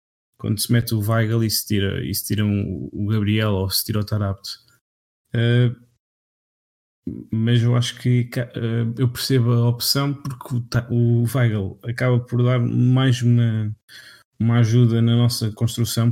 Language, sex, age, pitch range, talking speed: Portuguese, male, 20-39, 110-120 Hz, 140 wpm